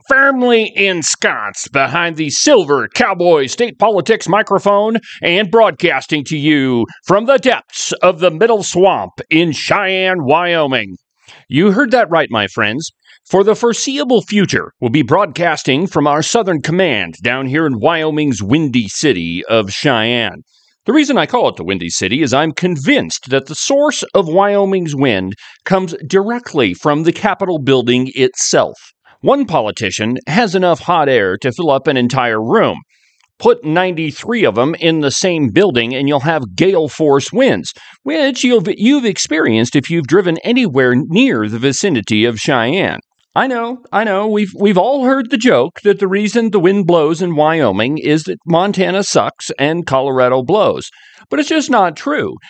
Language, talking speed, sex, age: English, 160 wpm, male, 40-59